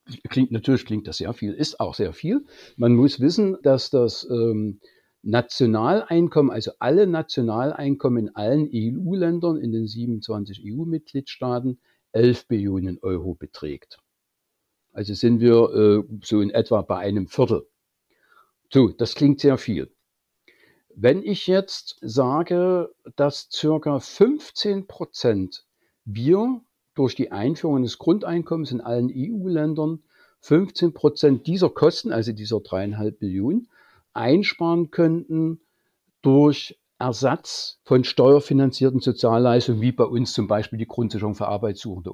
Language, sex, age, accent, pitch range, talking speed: German, male, 60-79, German, 110-155 Hz, 120 wpm